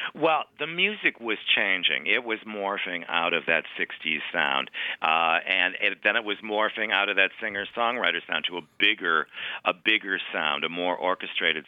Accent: American